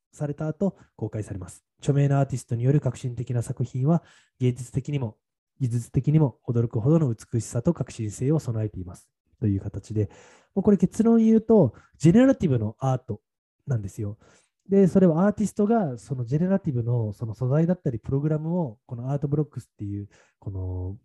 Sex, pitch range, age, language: male, 115-170 Hz, 20-39, Japanese